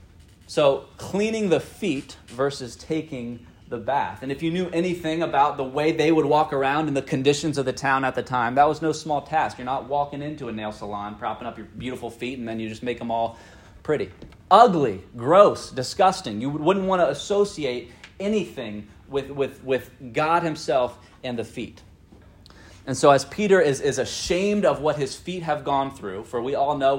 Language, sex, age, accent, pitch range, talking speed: English, male, 30-49, American, 110-155 Hz, 195 wpm